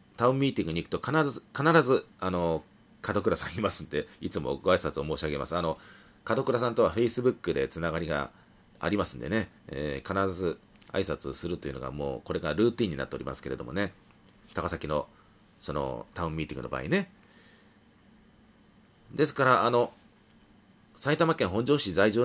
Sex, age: male, 40-59